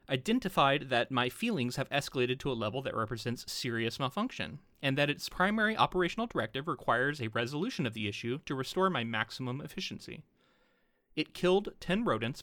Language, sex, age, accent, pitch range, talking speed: English, male, 30-49, American, 120-170 Hz, 165 wpm